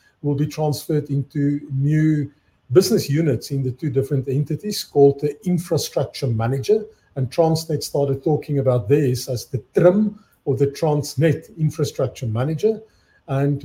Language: English